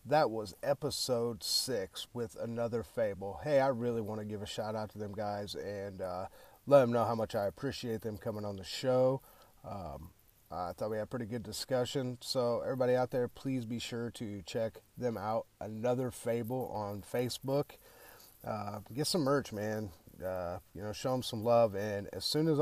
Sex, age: male, 30-49